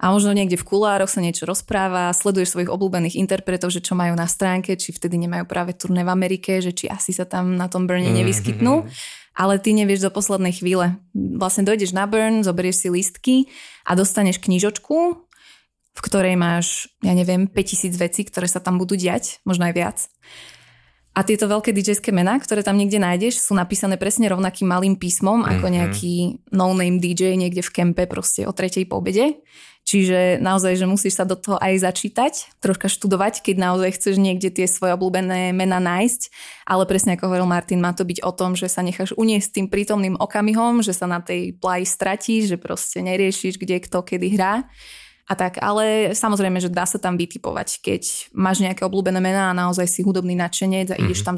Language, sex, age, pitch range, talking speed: Slovak, female, 20-39, 180-200 Hz, 190 wpm